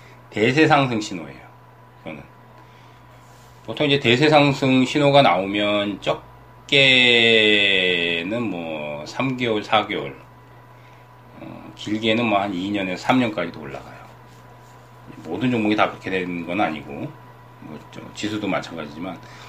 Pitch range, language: 100-130 Hz, Korean